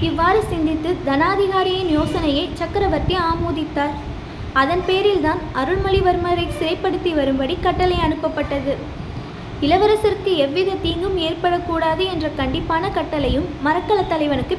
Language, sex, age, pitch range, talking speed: Tamil, female, 20-39, 300-370 Hz, 90 wpm